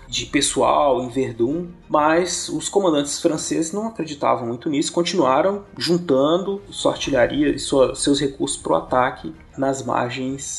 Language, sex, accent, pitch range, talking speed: Portuguese, male, Brazilian, 130-175 Hz, 135 wpm